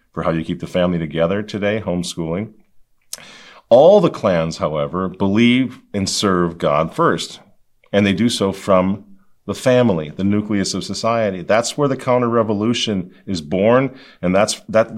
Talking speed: 150 wpm